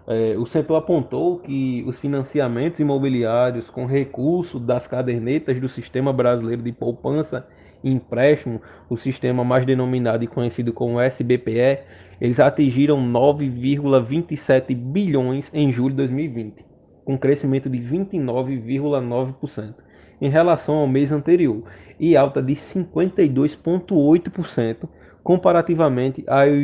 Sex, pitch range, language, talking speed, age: male, 125-150 Hz, Portuguese, 110 wpm, 20-39